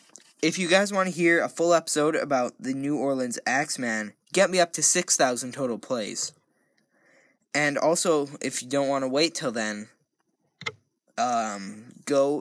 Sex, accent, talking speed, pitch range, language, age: male, American, 160 wpm, 120-165 Hz, English, 10-29